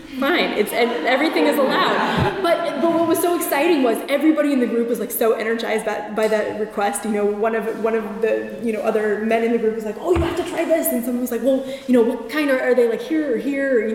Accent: American